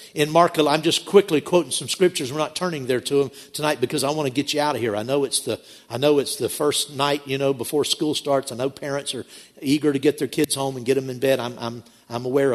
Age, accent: 50-69, American